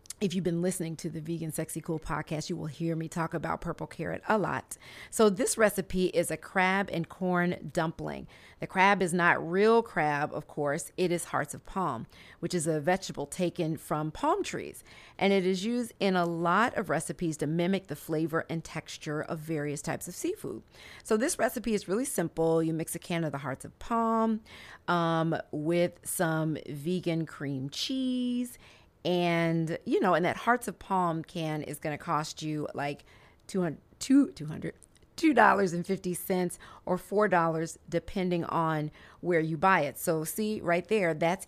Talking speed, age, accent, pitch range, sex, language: 175 wpm, 40-59, American, 160-195 Hz, female, English